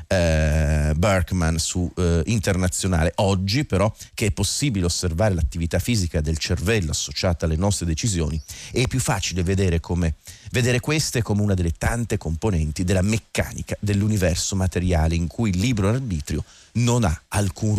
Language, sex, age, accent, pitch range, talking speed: Italian, male, 40-59, native, 85-105 Hz, 150 wpm